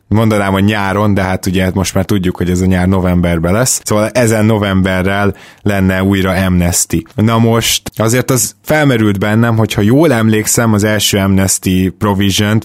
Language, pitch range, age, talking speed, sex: Hungarian, 90-110 Hz, 20-39, 165 wpm, male